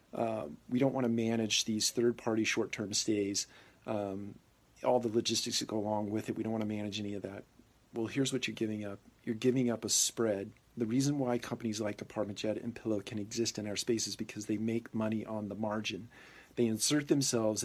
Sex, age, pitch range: male, 40-59, 105-120 Hz